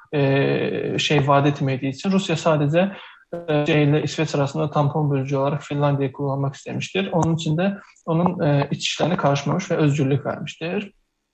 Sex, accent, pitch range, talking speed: male, native, 145-165 Hz, 130 wpm